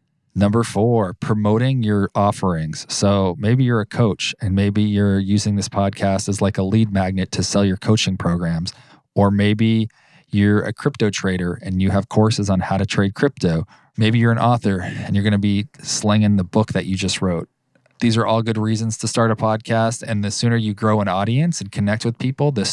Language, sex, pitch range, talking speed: English, male, 95-115 Hz, 205 wpm